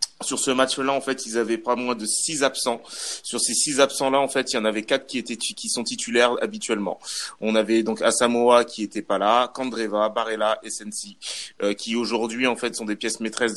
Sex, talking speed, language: male, 225 wpm, French